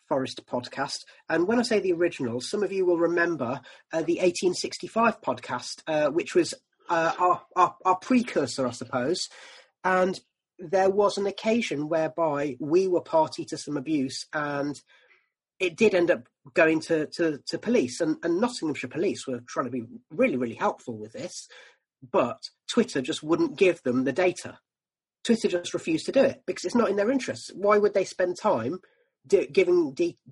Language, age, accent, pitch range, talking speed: English, 30-49, British, 150-200 Hz, 180 wpm